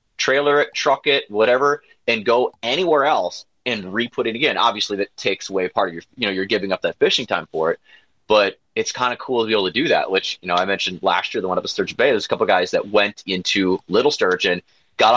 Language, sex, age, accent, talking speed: English, male, 30-49, American, 255 wpm